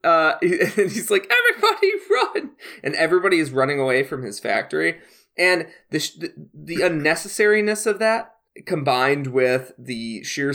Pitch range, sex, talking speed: 120-185 Hz, male, 150 wpm